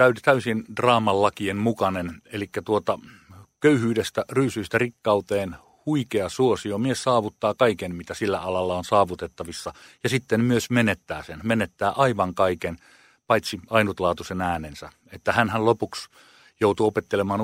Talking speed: 115 wpm